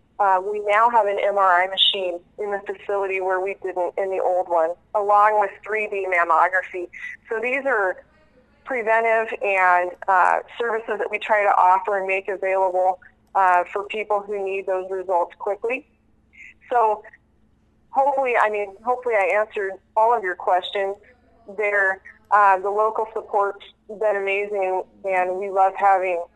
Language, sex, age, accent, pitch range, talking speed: English, female, 20-39, American, 180-205 Hz, 150 wpm